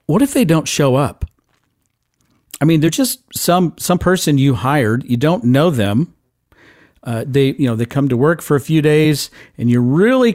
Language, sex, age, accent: English, male, 50-69, American